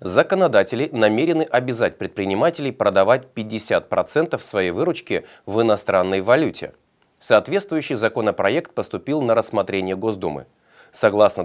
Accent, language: native, Russian